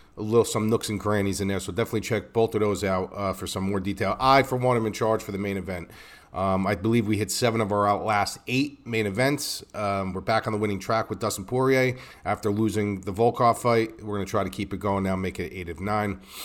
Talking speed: 260 wpm